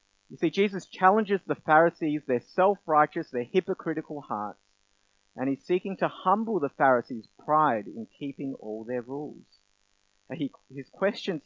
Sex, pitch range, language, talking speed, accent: male, 130-195 Hz, English, 140 wpm, Australian